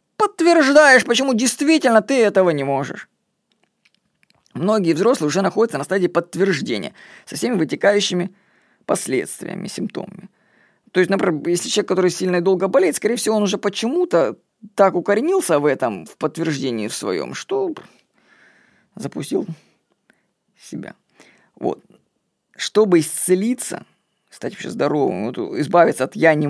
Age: 20-39